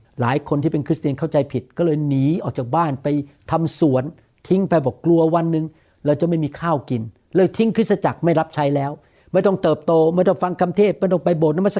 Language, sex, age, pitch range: Thai, male, 60-79, 130-175 Hz